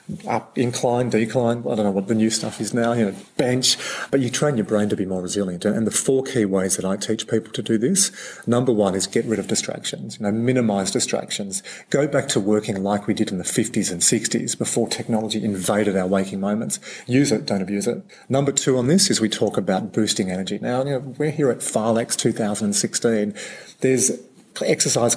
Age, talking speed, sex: 40-59, 215 wpm, male